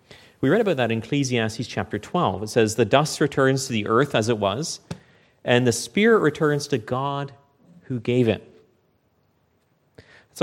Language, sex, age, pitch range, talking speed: English, male, 30-49, 115-155 Hz, 165 wpm